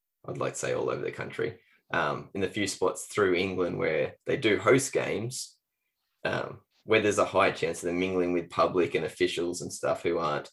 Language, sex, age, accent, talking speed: English, male, 10-29, Australian, 210 wpm